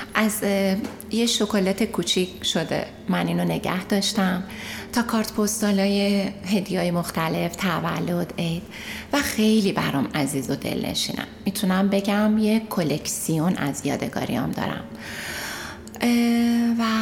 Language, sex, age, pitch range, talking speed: Persian, female, 30-49, 175-220 Hz, 110 wpm